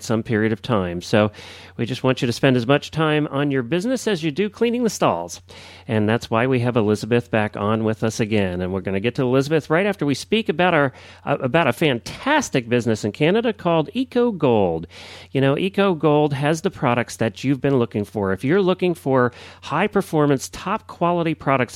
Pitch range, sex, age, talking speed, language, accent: 110-150 Hz, male, 40-59, 200 wpm, English, American